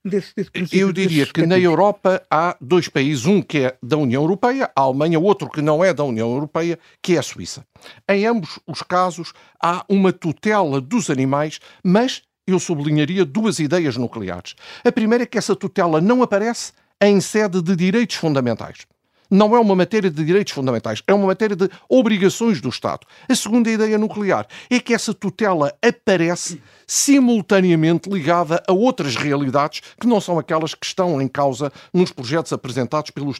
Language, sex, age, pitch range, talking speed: Portuguese, male, 50-69, 150-205 Hz, 170 wpm